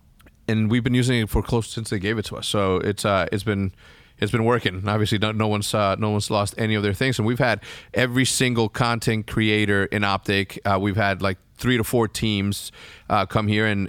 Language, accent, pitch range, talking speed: English, American, 105-130 Hz, 240 wpm